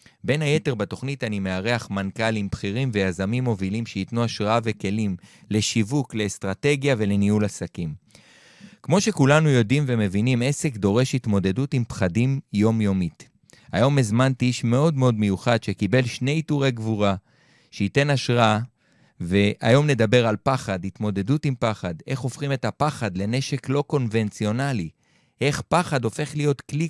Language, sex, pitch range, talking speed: Hebrew, male, 105-135 Hz, 125 wpm